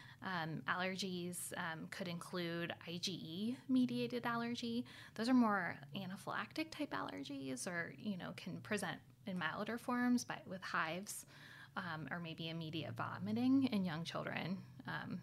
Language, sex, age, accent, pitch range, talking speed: English, female, 10-29, American, 160-215 Hz, 130 wpm